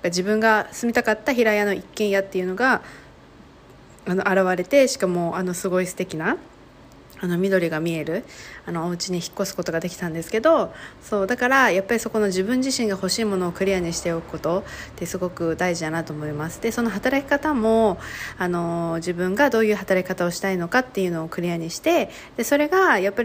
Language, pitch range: Japanese, 180-235 Hz